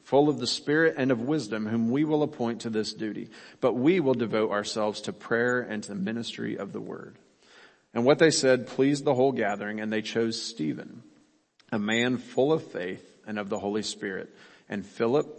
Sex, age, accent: male, 40-59, American